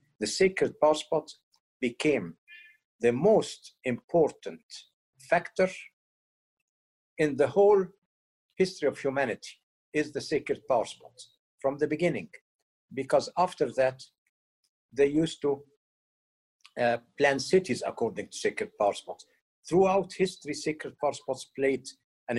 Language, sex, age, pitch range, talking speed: English, male, 60-79, 120-180 Hz, 120 wpm